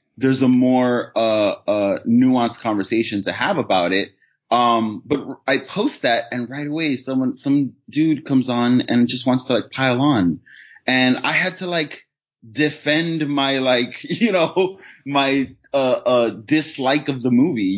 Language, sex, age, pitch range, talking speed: English, male, 20-39, 105-145 Hz, 160 wpm